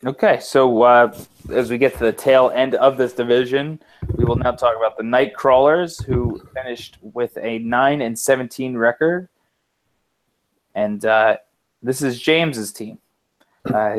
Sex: male